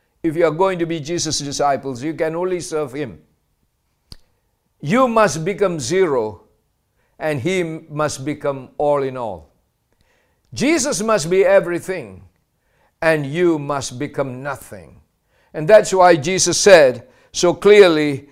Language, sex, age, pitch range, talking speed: English, male, 50-69, 145-195 Hz, 130 wpm